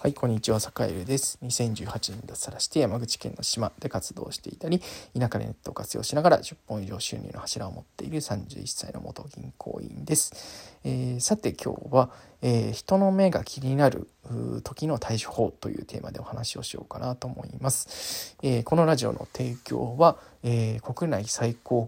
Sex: male